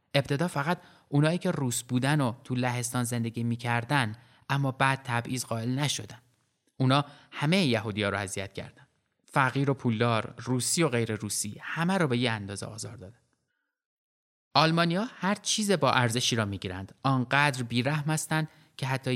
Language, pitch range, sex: Persian, 110-140 Hz, male